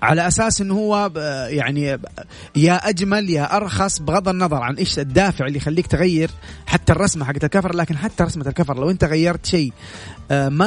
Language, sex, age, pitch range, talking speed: Arabic, male, 30-49, 140-185 Hz, 170 wpm